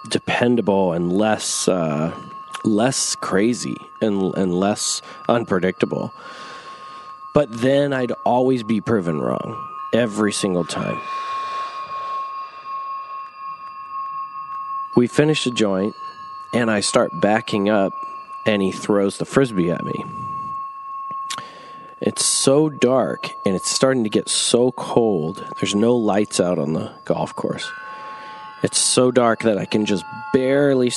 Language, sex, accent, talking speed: English, male, American, 120 wpm